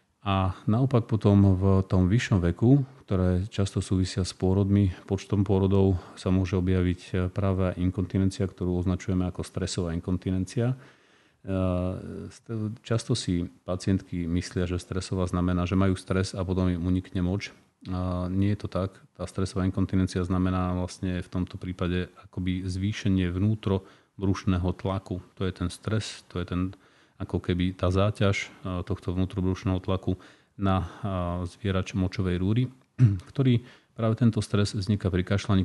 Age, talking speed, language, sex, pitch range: 30-49, 135 wpm, Slovak, male, 90-100 Hz